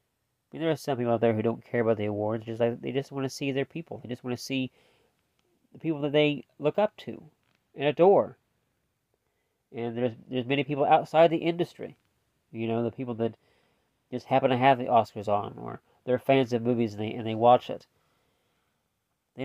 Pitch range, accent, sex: 110-130 Hz, American, male